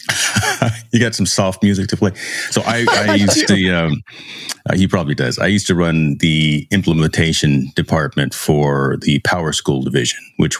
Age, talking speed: 30-49, 170 wpm